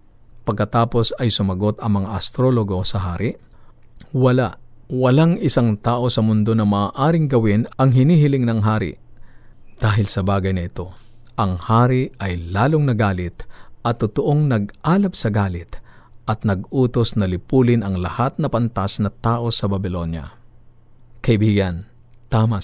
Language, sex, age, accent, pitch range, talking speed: Filipino, male, 50-69, native, 100-120 Hz, 135 wpm